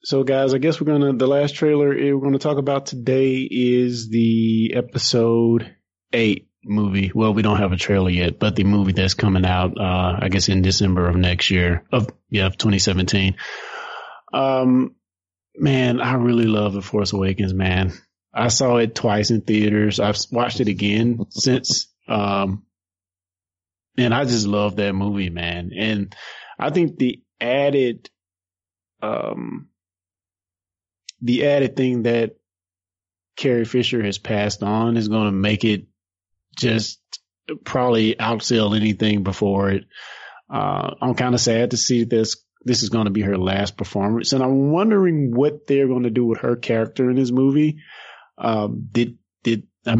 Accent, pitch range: American, 100-125 Hz